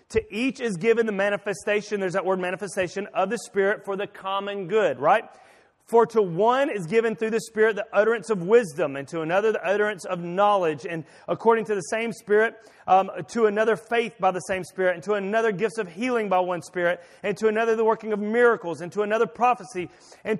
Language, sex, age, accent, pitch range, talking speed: English, male, 30-49, American, 185-225 Hz, 210 wpm